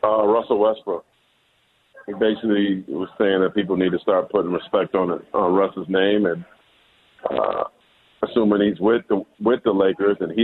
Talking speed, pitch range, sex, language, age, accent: 170 wpm, 95-115 Hz, male, English, 50-69, American